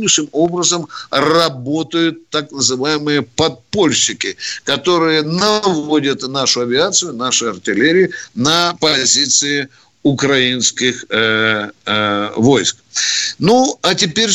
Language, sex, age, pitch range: Russian, male, 50-69, 130-175 Hz